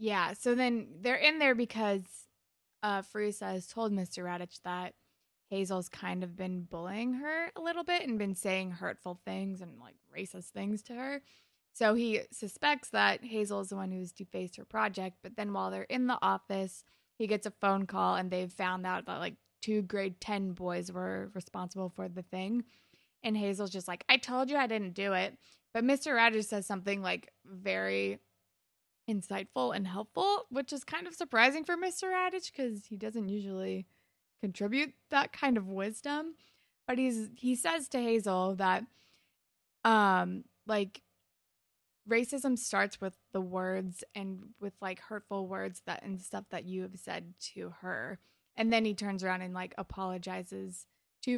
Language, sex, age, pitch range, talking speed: English, female, 20-39, 185-240 Hz, 175 wpm